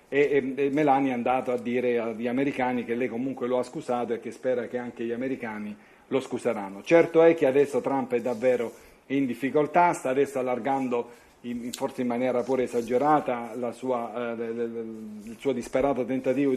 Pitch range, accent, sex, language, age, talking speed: 120-135 Hz, native, male, Italian, 40-59, 180 wpm